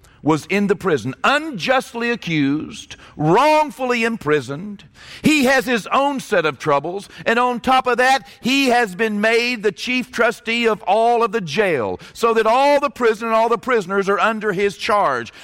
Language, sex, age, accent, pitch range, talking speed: English, male, 50-69, American, 205-255 Hz, 175 wpm